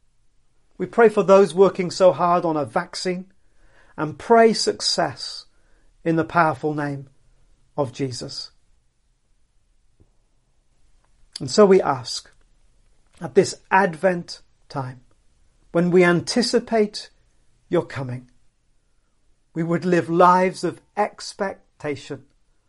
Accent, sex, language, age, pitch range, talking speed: British, male, English, 40-59, 135-185 Hz, 100 wpm